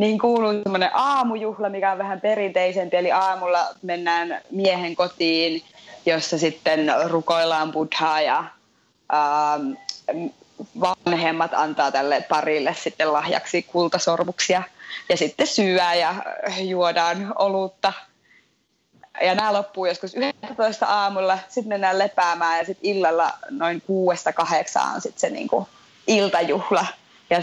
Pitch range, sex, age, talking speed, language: 170-210 Hz, female, 20-39, 115 wpm, Finnish